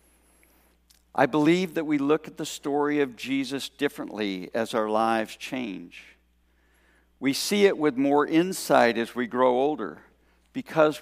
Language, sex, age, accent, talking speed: English, male, 60-79, American, 140 wpm